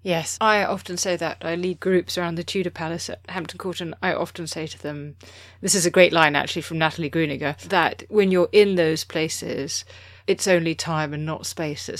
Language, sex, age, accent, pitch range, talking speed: English, female, 30-49, British, 150-200 Hz, 215 wpm